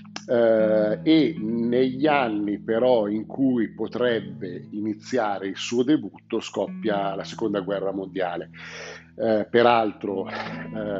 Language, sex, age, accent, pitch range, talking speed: Italian, male, 50-69, native, 100-120 Hz, 95 wpm